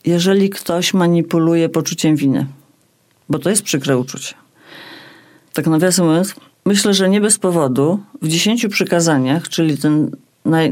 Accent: Polish